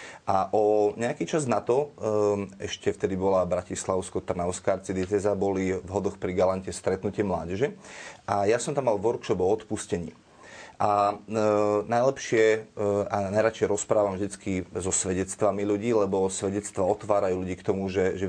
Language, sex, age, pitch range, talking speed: Slovak, male, 30-49, 95-110 Hz, 155 wpm